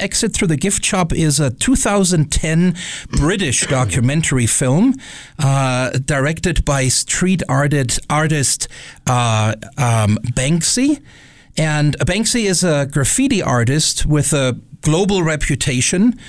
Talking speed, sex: 105 wpm, male